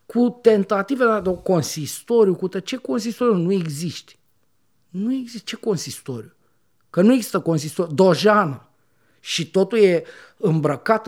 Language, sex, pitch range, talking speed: Romanian, male, 150-215 Hz, 130 wpm